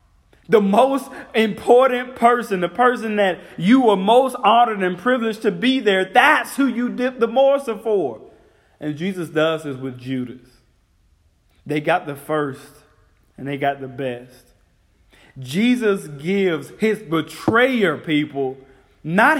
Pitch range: 140-220 Hz